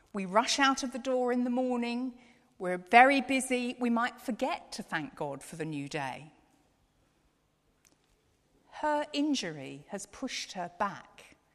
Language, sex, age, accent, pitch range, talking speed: English, female, 50-69, British, 190-275 Hz, 145 wpm